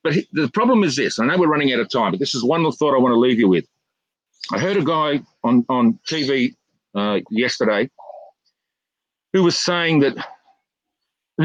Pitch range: 135-195 Hz